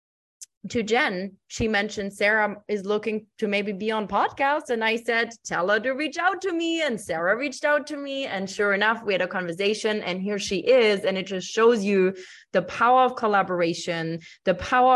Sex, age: female, 20-39